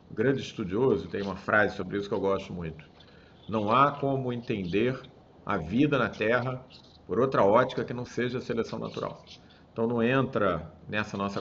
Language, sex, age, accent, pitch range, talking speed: Portuguese, male, 40-59, Brazilian, 105-135 Hz, 175 wpm